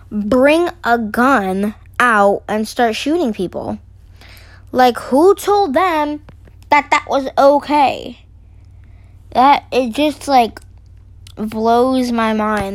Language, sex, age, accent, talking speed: English, female, 20-39, American, 110 wpm